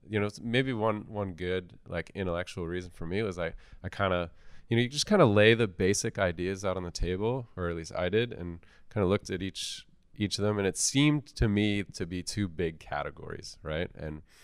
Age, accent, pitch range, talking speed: 20-39, American, 85-100 Hz, 235 wpm